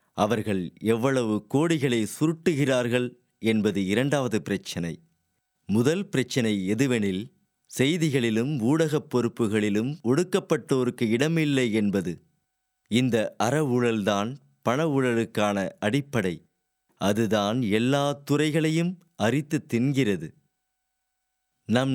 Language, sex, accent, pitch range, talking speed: Tamil, male, native, 105-145 Hz, 75 wpm